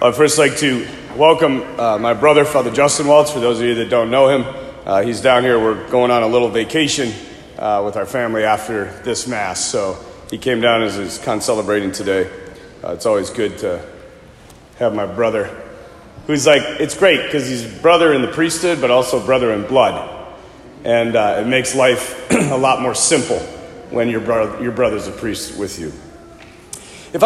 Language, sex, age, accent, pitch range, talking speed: English, male, 40-59, American, 130-215 Hz, 195 wpm